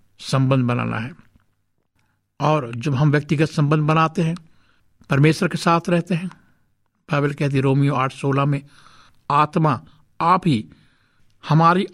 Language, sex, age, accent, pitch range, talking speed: Hindi, male, 60-79, native, 120-165 Hz, 130 wpm